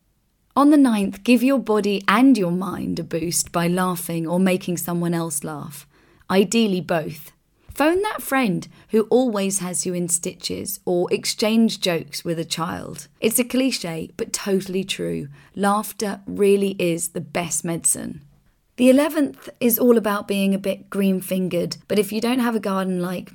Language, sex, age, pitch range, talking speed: English, female, 30-49, 175-225 Hz, 165 wpm